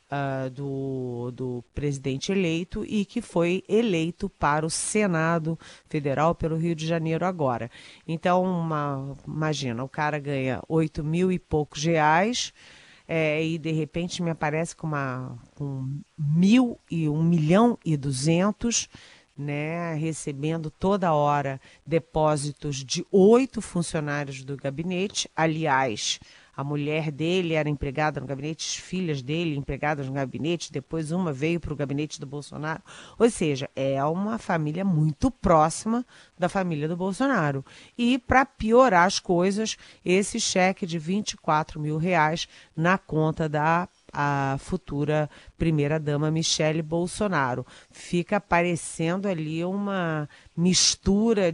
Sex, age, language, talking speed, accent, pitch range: female, 40-59, Portuguese, 130 wpm, Brazilian, 150-180 Hz